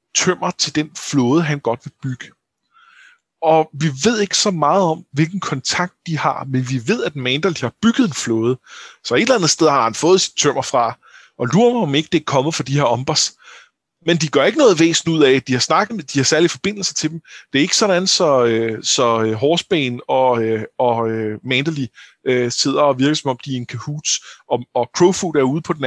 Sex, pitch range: male, 135-180 Hz